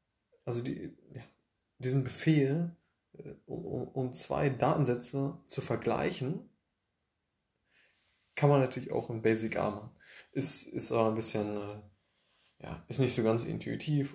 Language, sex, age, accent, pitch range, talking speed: German, male, 20-39, German, 110-135 Hz, 130 wpm